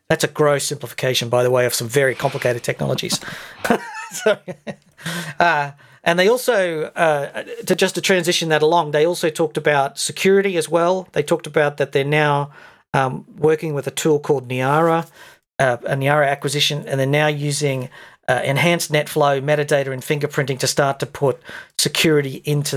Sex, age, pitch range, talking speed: male, 40-59, 140-165 Hz, 165 wpm